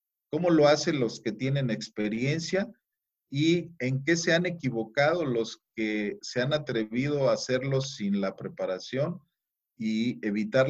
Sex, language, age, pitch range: male, Spanish, 40-59, 115-155 Hz